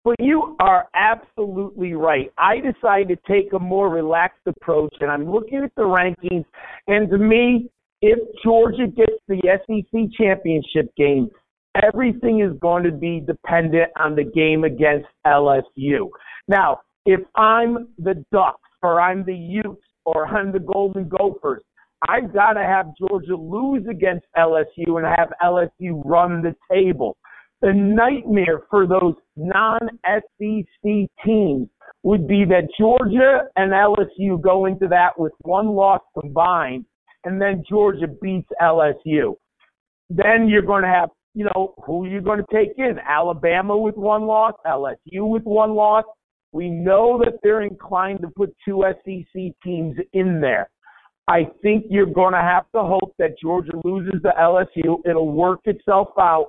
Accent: American